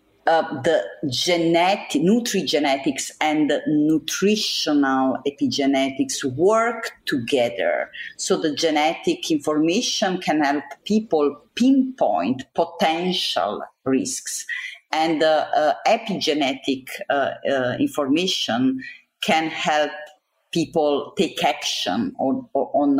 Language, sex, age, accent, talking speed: English, female, 40-59, Italian, 90 wpm